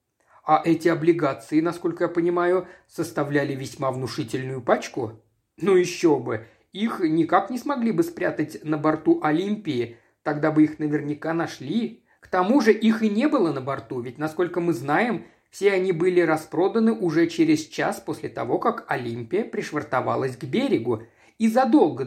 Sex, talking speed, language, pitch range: male, 150 wpm, Russian, 155-220 Hz